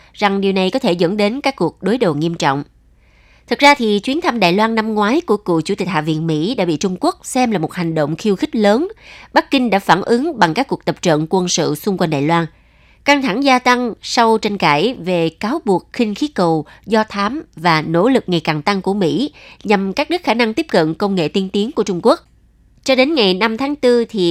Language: Vietnamese